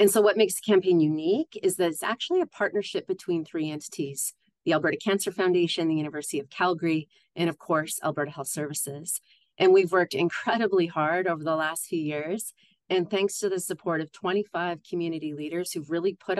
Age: 30-49